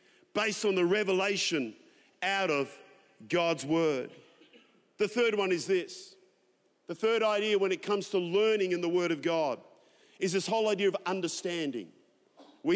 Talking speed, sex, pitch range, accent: 155 wpm, male, 180-215 Hz, Australian